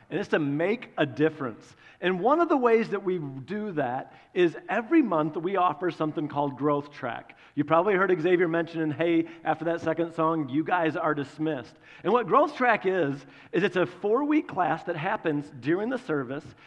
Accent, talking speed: American, 190 wpm